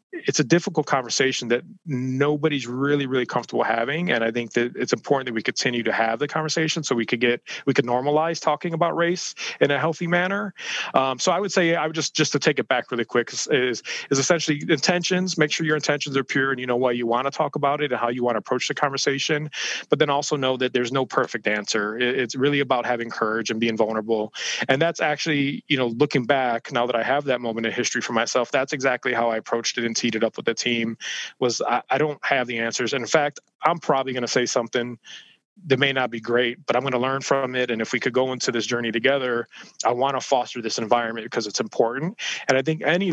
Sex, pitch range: male, 120-145 Hz